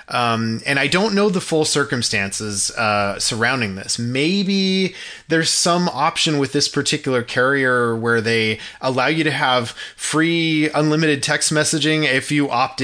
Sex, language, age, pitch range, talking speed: male, English, 30-49, 120-160 Hz, 150 wpm